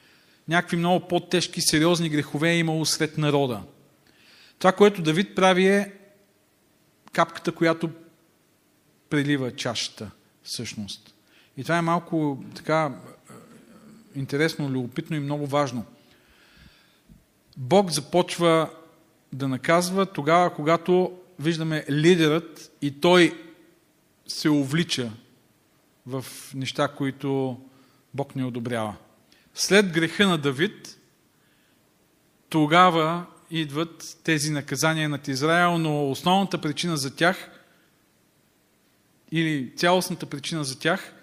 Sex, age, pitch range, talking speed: male, 40-59, 140-170 Hz, 100 wpm